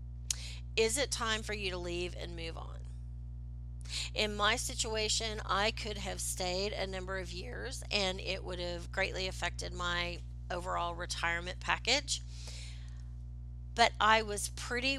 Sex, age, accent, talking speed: female, 40-59, American, 140 wpm